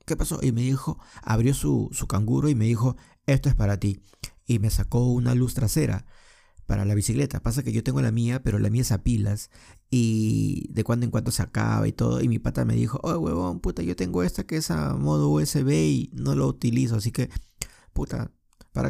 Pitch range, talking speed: 90-125 Hz, 220 wpm